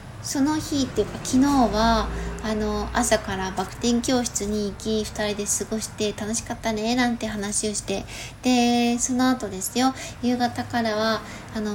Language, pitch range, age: Japanese, 210-255 Hz, 20-39